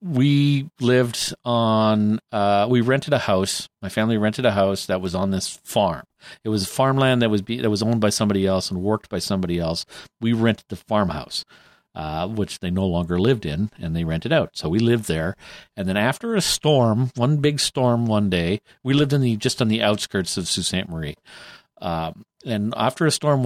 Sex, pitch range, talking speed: male, 95-120 Hz, 205 wpm